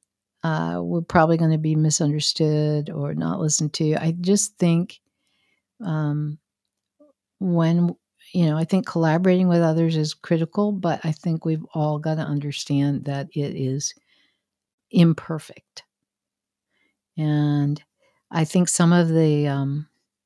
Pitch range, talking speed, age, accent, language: 145-175 Hz, 130 wpm, 60-79, American, English